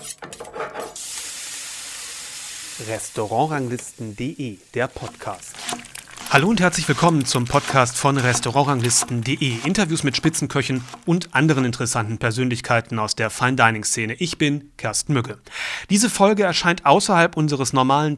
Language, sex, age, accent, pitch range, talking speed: German, male, 30-49, German, 125-160 Hz, 100 wpm